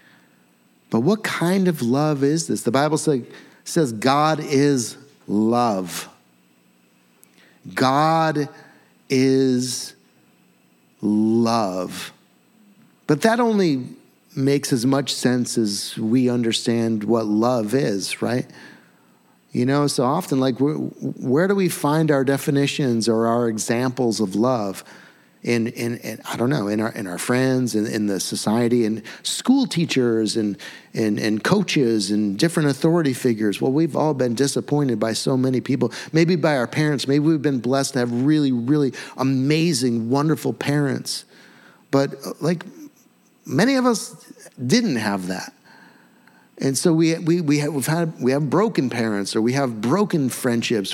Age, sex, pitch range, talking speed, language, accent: 50-69, male, 115-155 Hz, 145 wpm, English, American